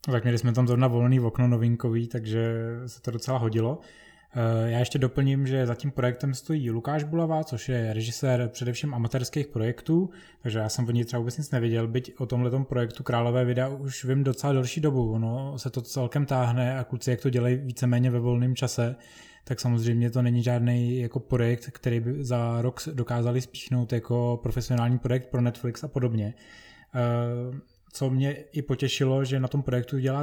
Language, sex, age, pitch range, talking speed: Czech, male, 20-39, 120-135 Hz, 185 wpm